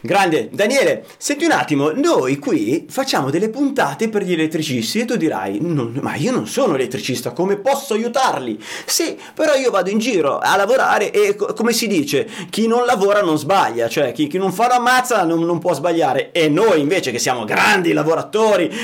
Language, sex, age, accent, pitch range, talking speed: Italian, male, 30-49, native, 155-220 Hz, 190 wpm